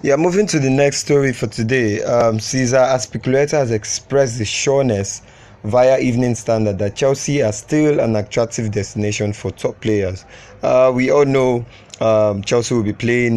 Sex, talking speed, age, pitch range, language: male, 170 wpm, 30-49, 105-125 Hz, English